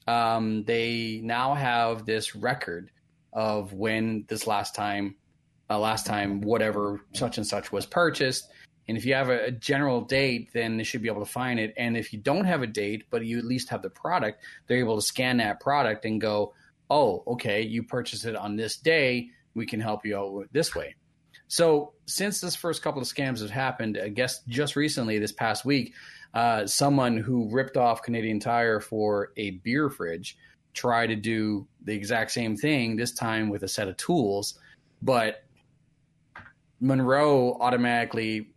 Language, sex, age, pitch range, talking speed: English, male, 30-49, 110-130 Hz, 180 wpm